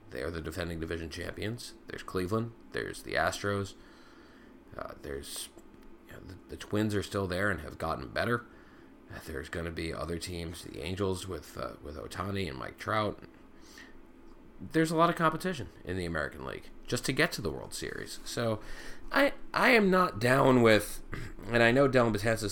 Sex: male